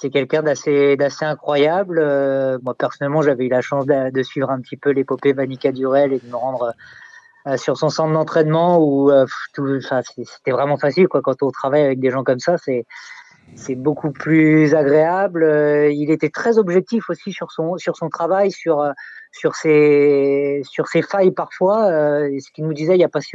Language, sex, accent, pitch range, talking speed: French, male, French, 140-165 Hz, 205 wpm